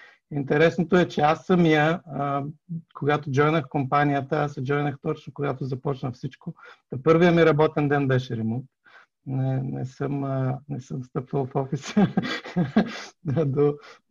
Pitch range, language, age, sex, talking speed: 130-155 Hz, Bulgarian, 50-69, male, 130 wpm